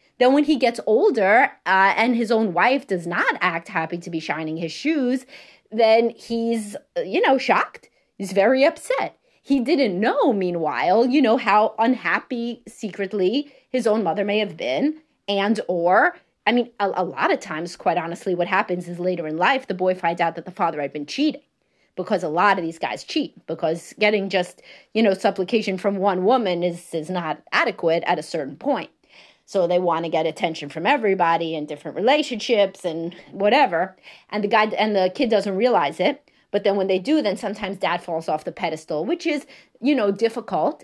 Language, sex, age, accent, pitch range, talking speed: English, female, 30-49, American, 175-225 Hz, 190 wpm